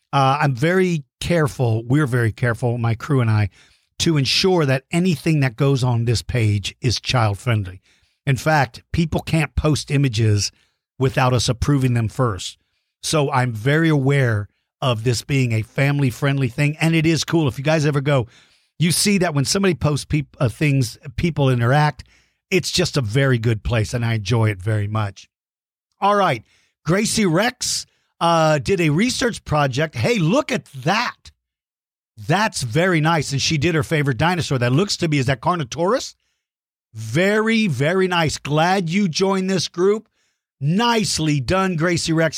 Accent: American